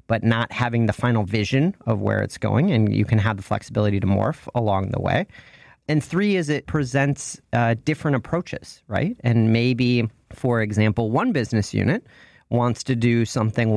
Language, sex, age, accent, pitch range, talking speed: English, male, 40-59, American, 105-130 Hz, 180 wpm